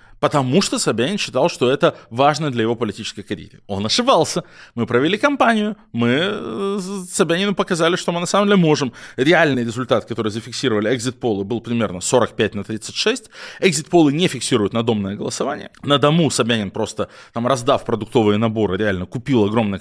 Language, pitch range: Russian, 110-145 Hz